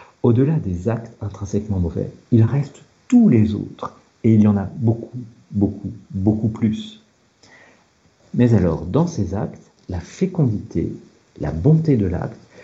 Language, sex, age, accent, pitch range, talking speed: French, male, 60-79, French, 95-130 Hz, 140 wpm